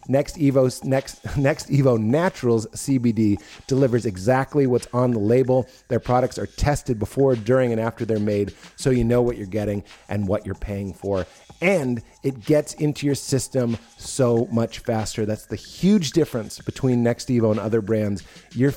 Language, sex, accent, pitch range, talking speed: English, male, American, 115-140 Hz, 175 wpm